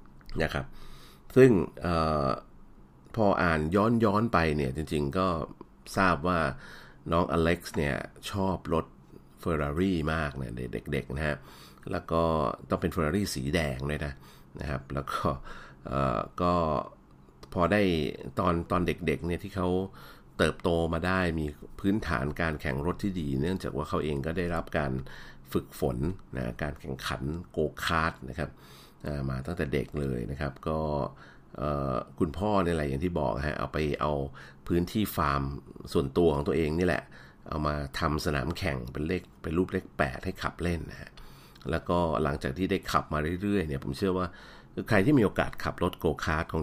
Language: Thai